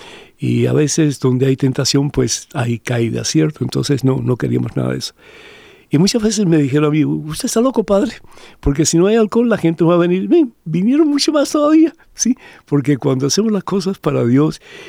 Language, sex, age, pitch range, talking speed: Spanish, male, 60-79, 130-170 Hz, 210 wpm